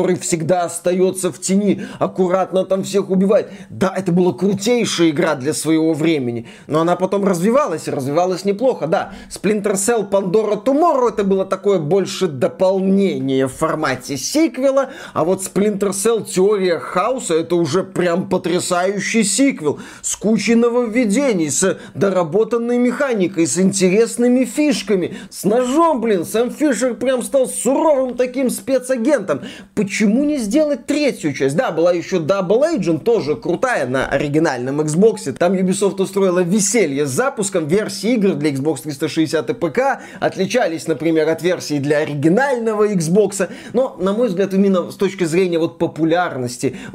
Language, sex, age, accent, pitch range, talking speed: Russian, male, 30-49, native, 170-230 Hz, 145 wpm